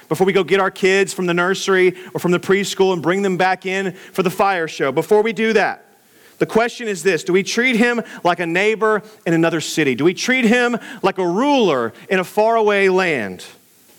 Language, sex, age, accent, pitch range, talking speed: English, male, 30-49, American, 180-225 Hz, 220 wpm